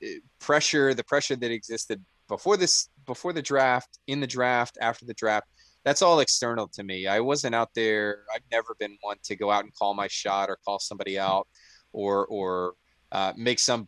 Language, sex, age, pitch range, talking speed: English, male, 20-39, 105-130 Hz, 185 wpm